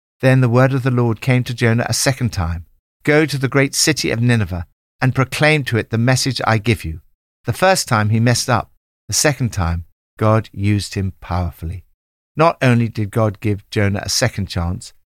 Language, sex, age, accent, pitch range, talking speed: English, male, 60-79, British, 95-135 Hz, 200 wpm